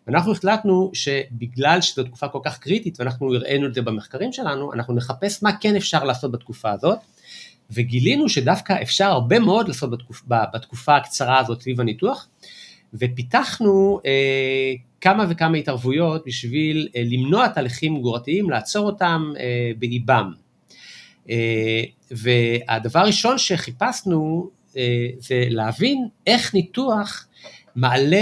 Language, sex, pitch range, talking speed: Hebrew, male, 125-175 Hz, 125 wpm